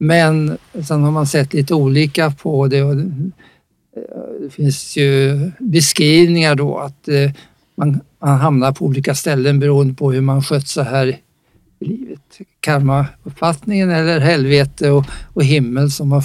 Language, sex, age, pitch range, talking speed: Swedish, male, 60-79, 140-165 Hz, 135 wpm